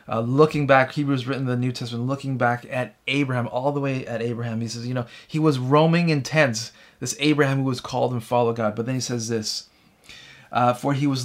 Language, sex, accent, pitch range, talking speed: English, male, American, 115-140 Hz, 235 wpm